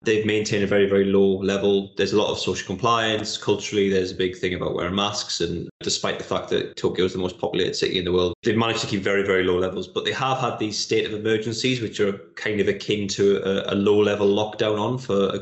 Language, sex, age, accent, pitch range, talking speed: English, male, 20-39, British, 100-120 Hz, 255 wpm